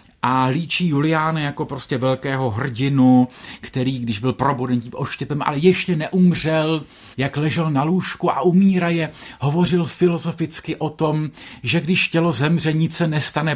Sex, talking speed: male, 150 wpm